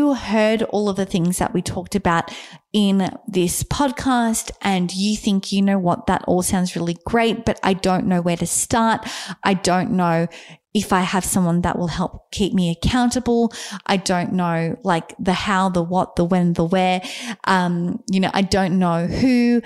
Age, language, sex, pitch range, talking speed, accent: 20-39, English, female, 180-215 Hz, 190 wpm, Australian